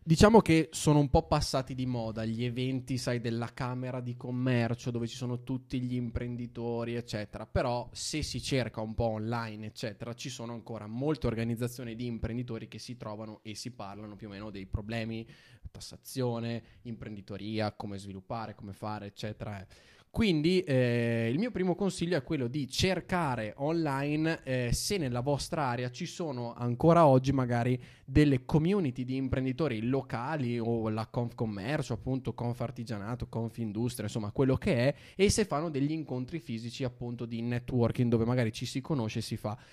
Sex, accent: male, native